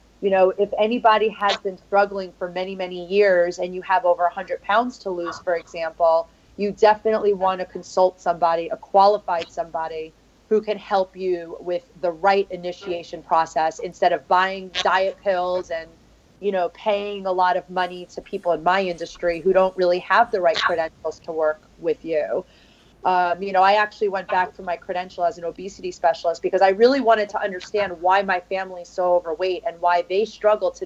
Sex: female